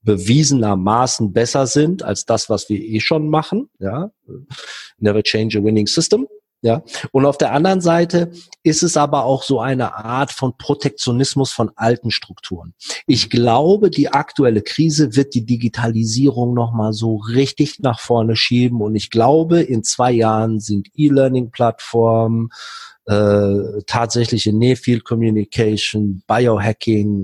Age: 40-59